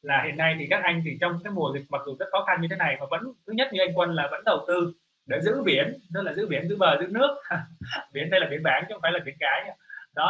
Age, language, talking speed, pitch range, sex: 20-39, Vietnamese, 310 wpm, 155-185 Hz, male